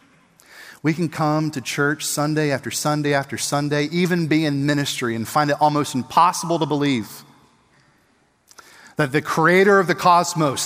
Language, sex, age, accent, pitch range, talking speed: English, male, 40-59, American, 150-230 Hz, 150 wpm